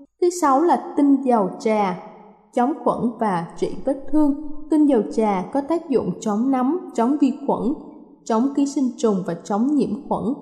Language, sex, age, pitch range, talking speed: Vietnamese, female, 20-39, 220-295 Hz, 180 wpm